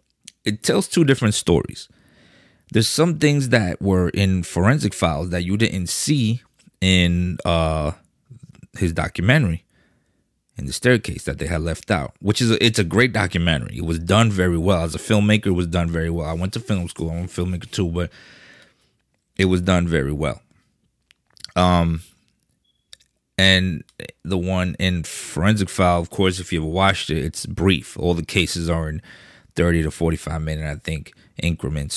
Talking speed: 175 wpm